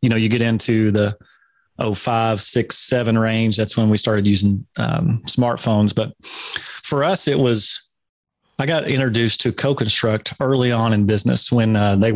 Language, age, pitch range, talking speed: English, 30-49, 110-130 Hz, 175 wpm